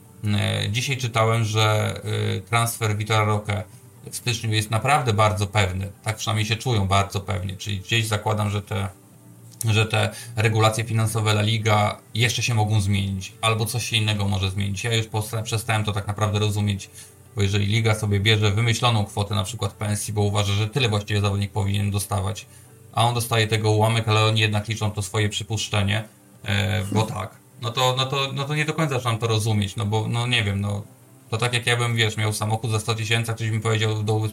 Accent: native